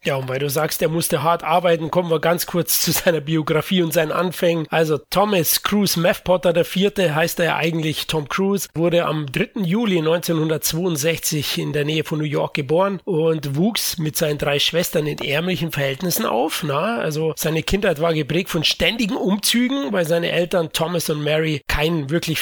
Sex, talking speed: male, 185 wpm